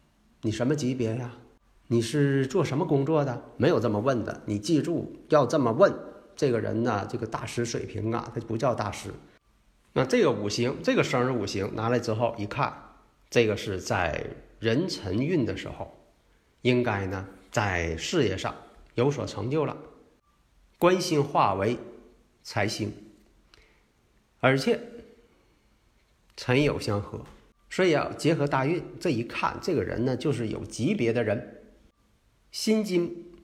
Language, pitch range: Chinese, 110-145 Hz